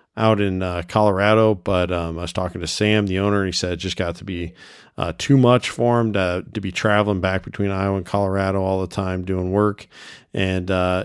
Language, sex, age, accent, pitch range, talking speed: English, male, 40-59, American, 90-105 Hz, 225 wpm